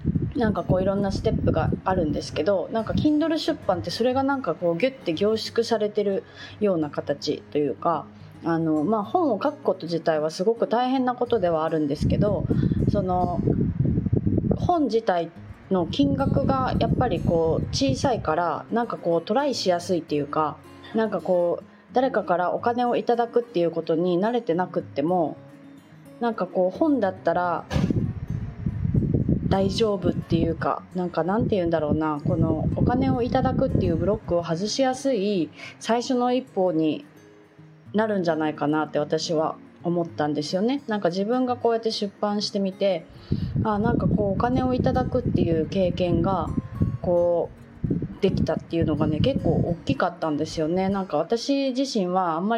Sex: female